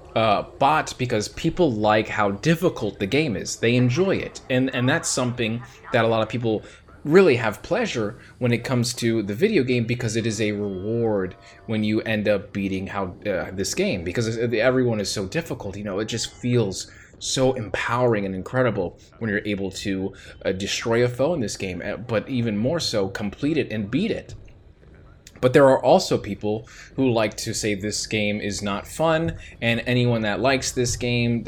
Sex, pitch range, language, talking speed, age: male, 100-125 Hz, English, 190 wpm, 20-39